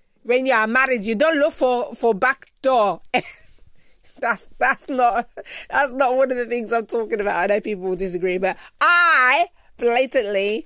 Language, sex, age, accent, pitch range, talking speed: English, female, 30-49, British, 195-265 Hz, 175 wpm